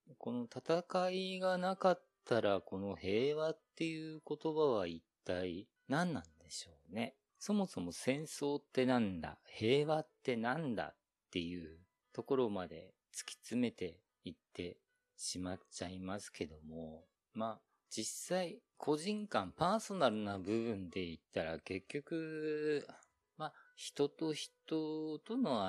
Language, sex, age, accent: Japanese, male, 40-59, native